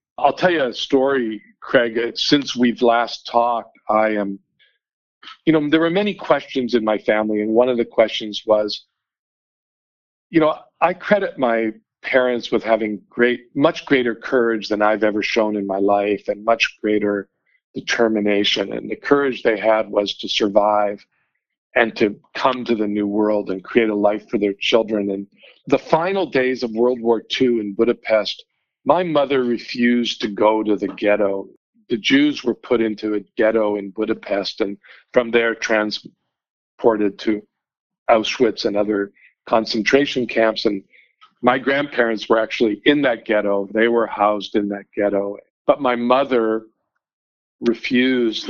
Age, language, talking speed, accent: 50-69, English, 155 wpm, American